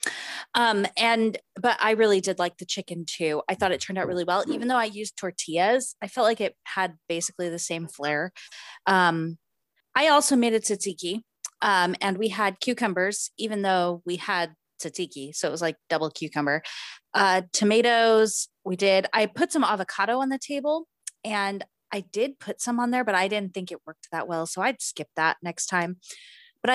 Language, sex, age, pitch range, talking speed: English, female, 20-39, 175-245 Hz, 195 wpm